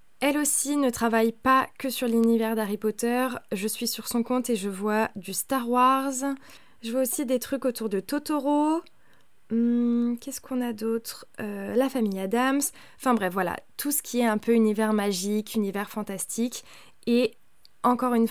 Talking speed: 175 wpm